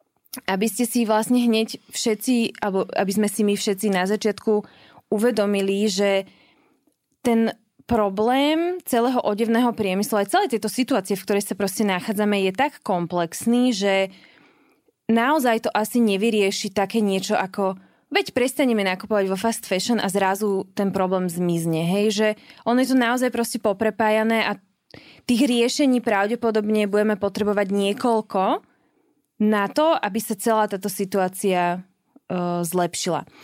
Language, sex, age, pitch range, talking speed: Slovak, female, 20-39, 195-240 Hz, 130 wpm